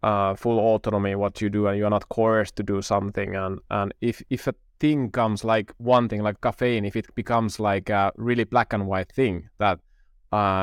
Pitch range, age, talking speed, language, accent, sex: 105-120 Hz, 20-39, 215 wpm, Finnish, native, male